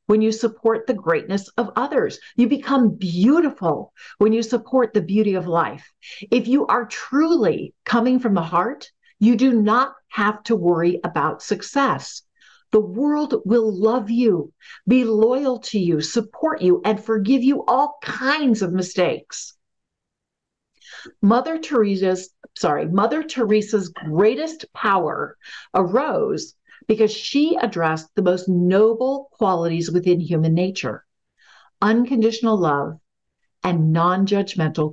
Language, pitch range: English, 180-255 Hz